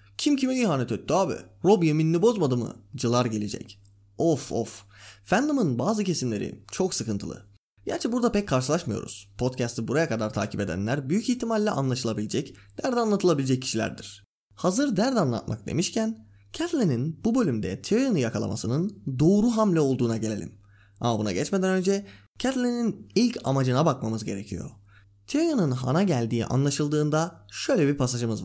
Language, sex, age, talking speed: Turkish, male, 20-39, 130 wpm